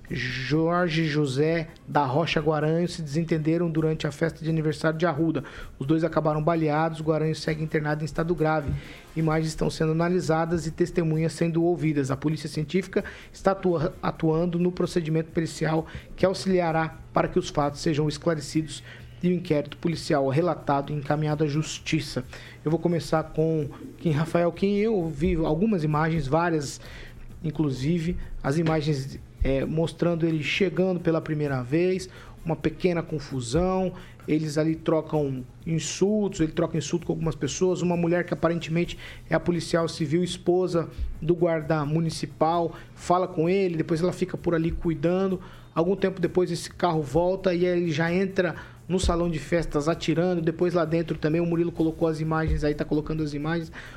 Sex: male